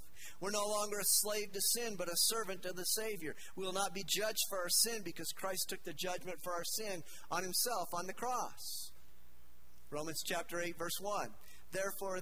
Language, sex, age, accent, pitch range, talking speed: English, male, 50-69, American, 160-210 Hz, 195 wpm